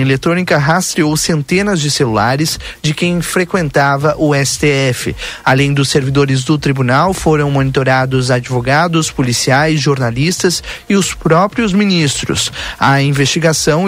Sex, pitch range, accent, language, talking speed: male, 130-165 Hz, Brazilian, Portuguese, 110 wpm